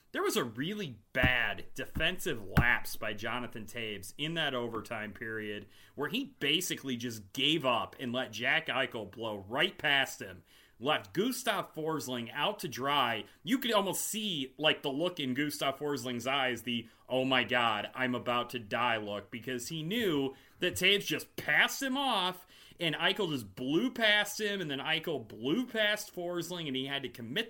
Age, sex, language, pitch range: 30-49, male, English, 125-200 Hz